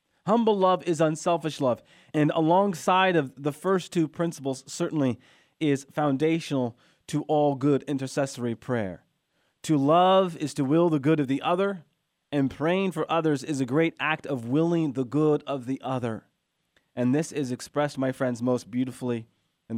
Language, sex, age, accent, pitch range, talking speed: English, male, 30-49, American, 125-155 Hz, 165 wpm